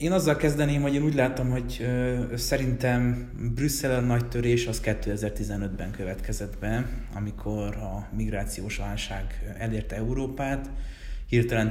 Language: Hungarian